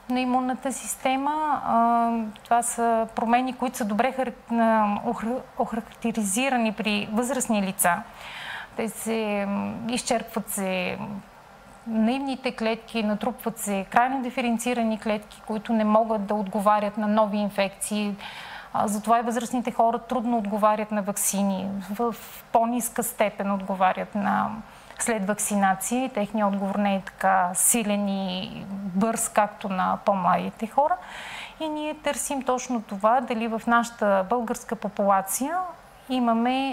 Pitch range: 210-245 Hz